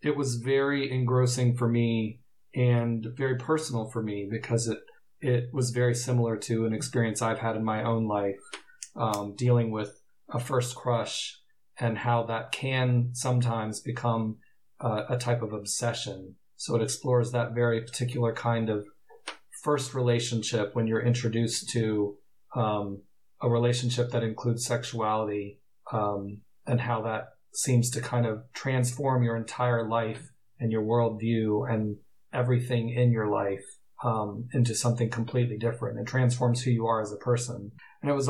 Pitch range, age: 110-125 Hz, 40-59